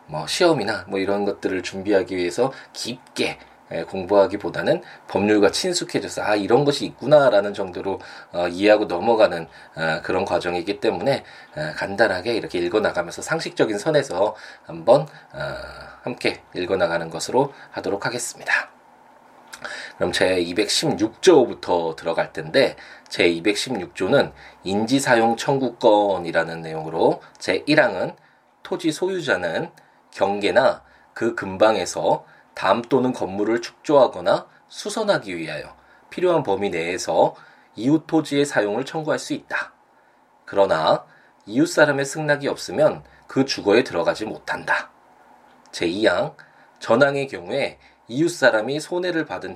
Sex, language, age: male, Korean, 20-39